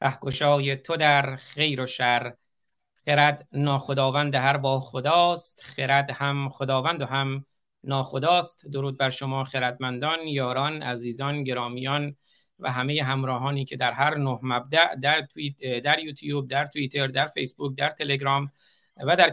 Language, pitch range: Persian, 125-145 Hz